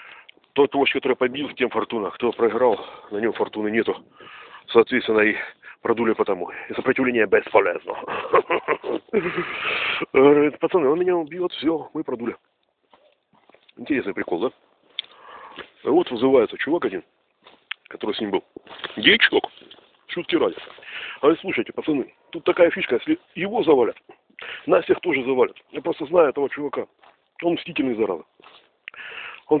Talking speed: 130 wpm